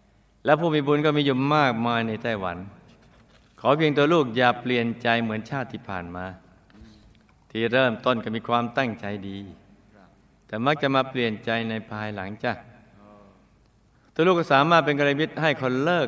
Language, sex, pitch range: Thai, male, 105-130 Hz